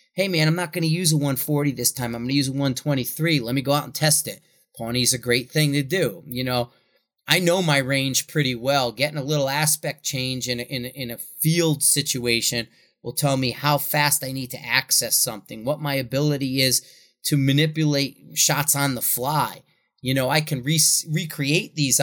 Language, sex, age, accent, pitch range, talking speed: English, male, 30-49, American, 125-150 Hz, 215 wpm